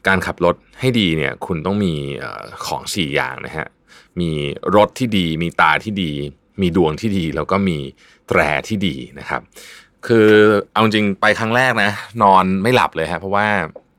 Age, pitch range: 20-39, 75-105 Hz